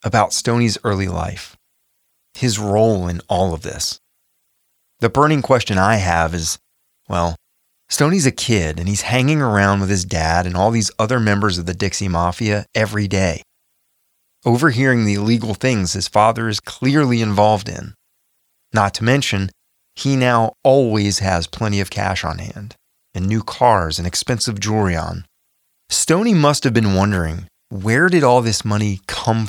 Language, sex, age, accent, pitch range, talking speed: English, male, 30-49, American, 95-125 Hz, 160 wpm